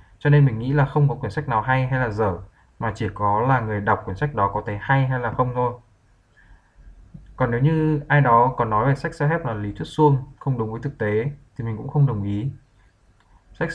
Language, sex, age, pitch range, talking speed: Vietnamese, male, 20-39, 105-145 Hz, 250 wpm